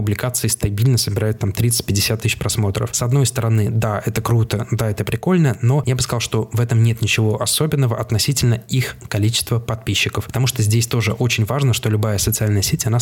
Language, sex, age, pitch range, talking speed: Russian, male, 20-39, 105-120 Hz, 190 wpm